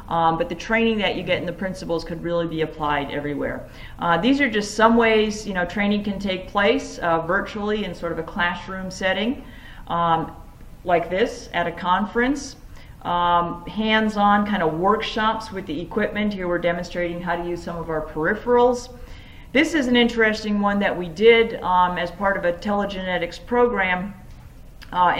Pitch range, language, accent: 170-220 Hz, English, American